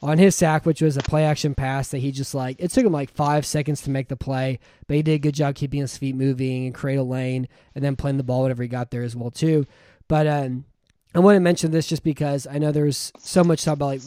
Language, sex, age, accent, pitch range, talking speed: English, male, 20-39, American, 135-150 Hz, 275 wpm